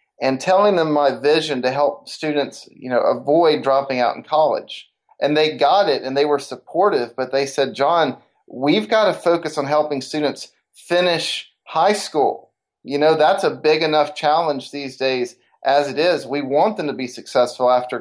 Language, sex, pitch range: English, male, 135-160 Hz